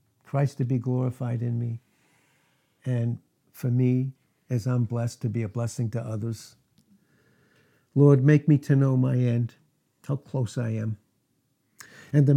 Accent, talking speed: American, 150 wpm